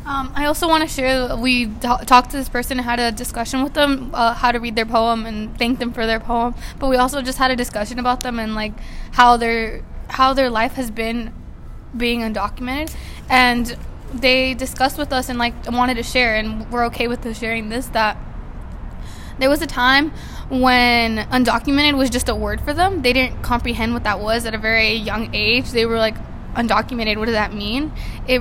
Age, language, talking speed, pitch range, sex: 20-39, English, 210 wpm, 220-255 Hz, female